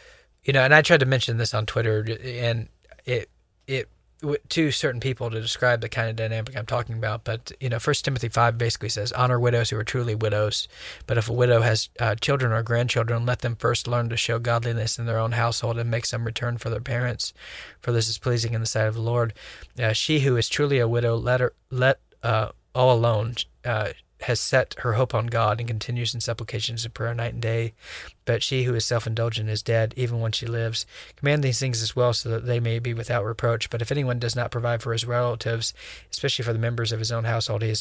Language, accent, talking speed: English, American, 235 wpm